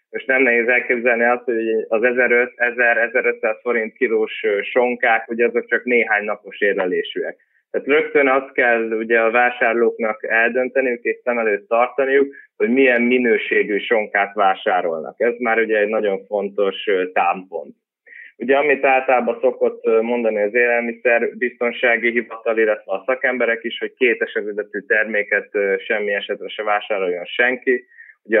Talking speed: 135 wpm